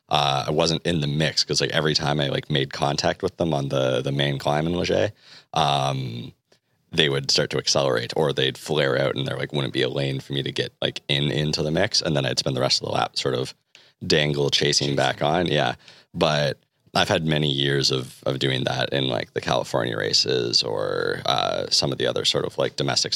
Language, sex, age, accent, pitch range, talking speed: French, male, 30-49, American, 70-75 Hz, 230 wpm